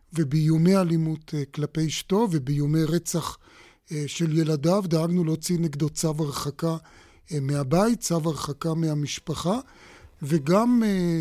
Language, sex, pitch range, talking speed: Hebrew, male, 155-190 Hz, 95 wpm